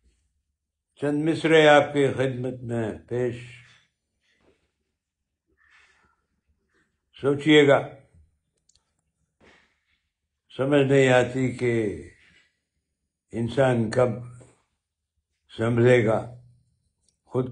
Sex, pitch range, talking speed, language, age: male, 110-150 Hz, 60 wpm, Urdu, 60-79